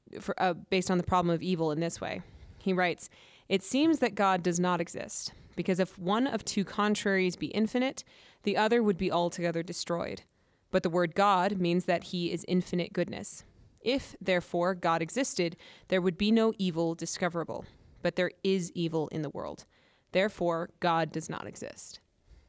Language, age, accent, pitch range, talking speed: English, 20-39, American, 165-195 Hz, 175 wpm